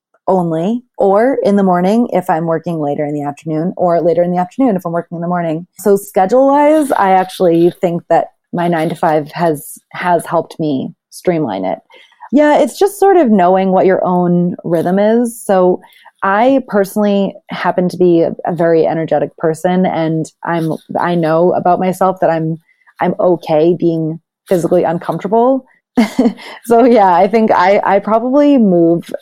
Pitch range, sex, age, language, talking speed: 165-215 Hz, female, 30-49, English, 170 wpm